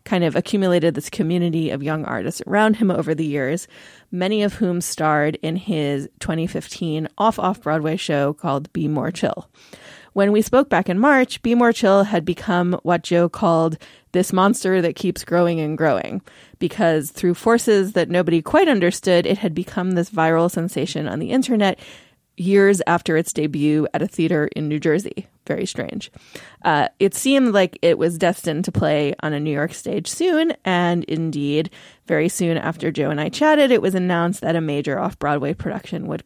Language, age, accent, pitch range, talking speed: English, 30-49, American, 160-210 Hz, 180 wpm